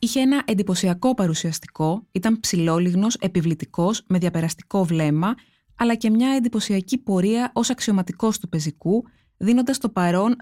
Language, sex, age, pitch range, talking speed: Greek, female, 20-39, 180-230 Hz, 125 wpm